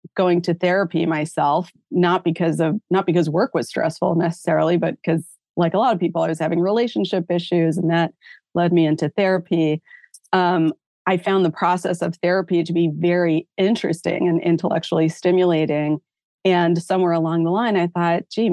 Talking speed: 170 wpm